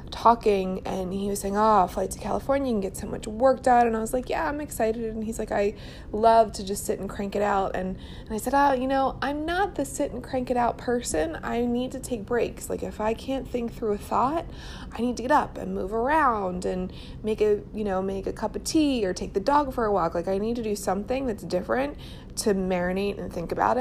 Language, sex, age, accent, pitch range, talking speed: English, female, 20-39, American, 190-240 Hz, 255 wpm